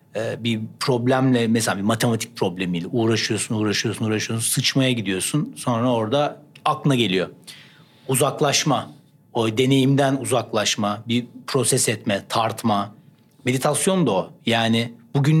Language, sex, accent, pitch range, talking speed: Turkish, male, native, 120-145 Hz, 110 wpm